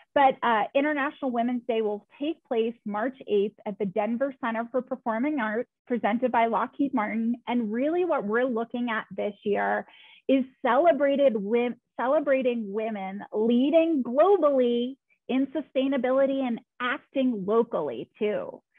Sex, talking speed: female, 130 wpm